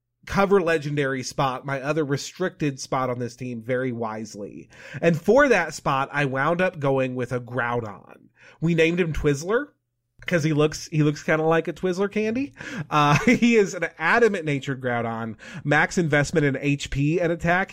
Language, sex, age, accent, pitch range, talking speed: English, male, 30-49, American, 135-180 Hz, 175 wpm